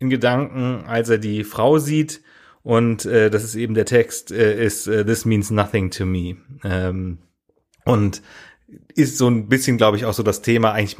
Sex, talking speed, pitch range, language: male, 190 wpm, 100-125 Hz, German